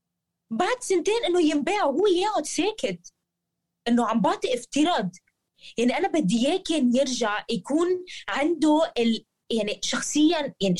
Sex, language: female, Arabic